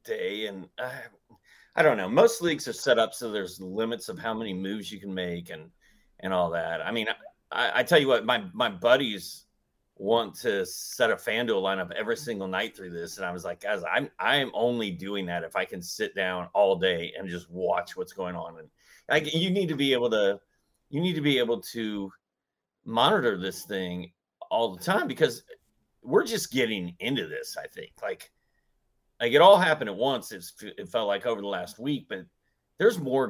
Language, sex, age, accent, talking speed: English, male, 30-49, American, 205 wpm